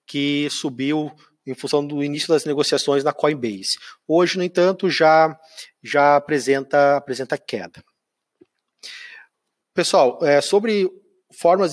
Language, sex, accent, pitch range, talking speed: Portuguese, male, Brazilian, 135-160 Hz, 110 wpm